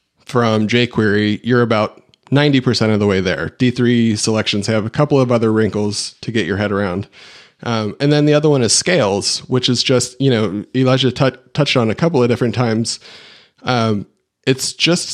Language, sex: English, male